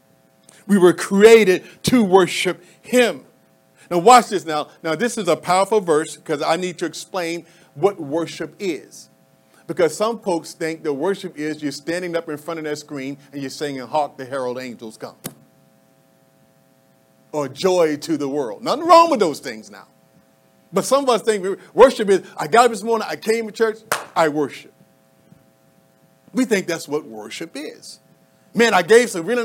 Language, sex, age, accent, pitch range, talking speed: English, male, 50-69, American, 135-195 Hz, 175 wpm